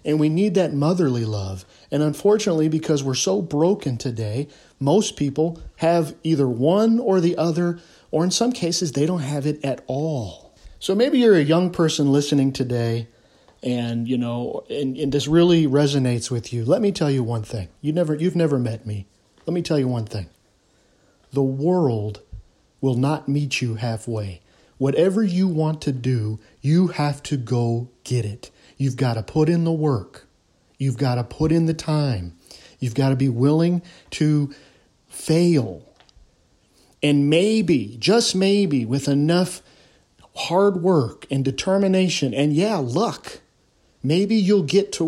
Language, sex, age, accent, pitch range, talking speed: English, male, 40-59, American, 125-165 Hz, 165 wpm